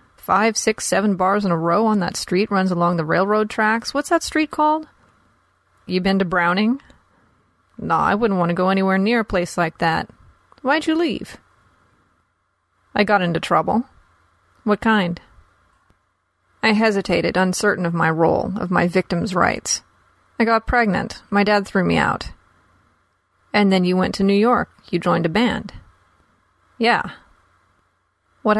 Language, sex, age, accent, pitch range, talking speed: English, female, 30-49, American, 165-215 Hz, 155 wpm